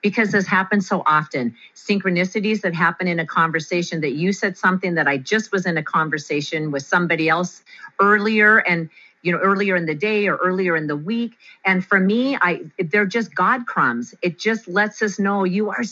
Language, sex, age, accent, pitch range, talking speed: English, female, 40-59, American, 155-215 Hz, 200 wpm